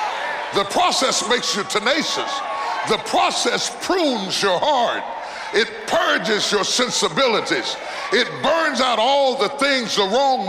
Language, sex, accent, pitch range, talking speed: English, female, American, 230-305 Hz, 125 wpm